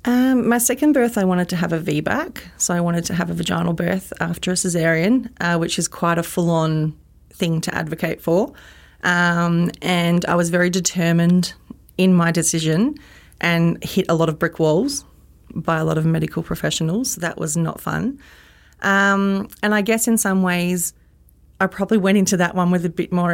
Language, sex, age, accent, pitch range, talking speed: English, female, 30-49, Australian, 165-185 Hz, 195 wpm